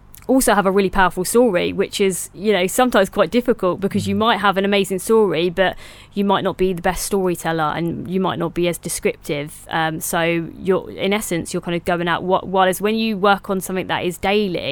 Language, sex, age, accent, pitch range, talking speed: English, female, 20-39, British, 165-190 Hz, 225 wpm